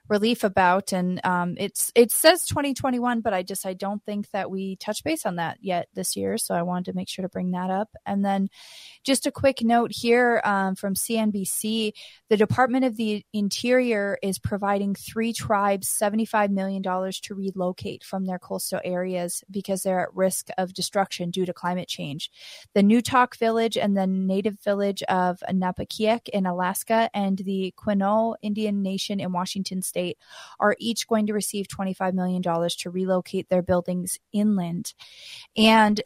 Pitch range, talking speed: 185-210 Hz, 175 wpm